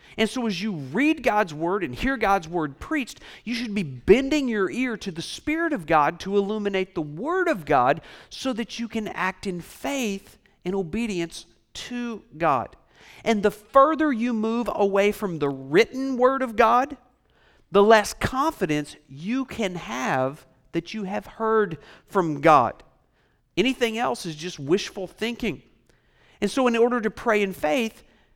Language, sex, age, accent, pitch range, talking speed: English, male, 50-69, American, 170-235 Hz, 165 wpm